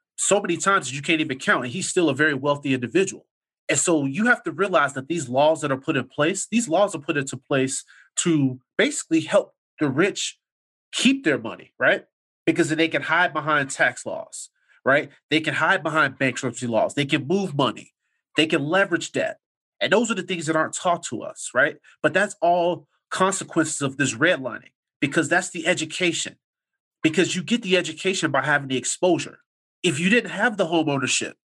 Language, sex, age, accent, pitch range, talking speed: English, male, 30-49, American, 150-195 Hz, 200 wpm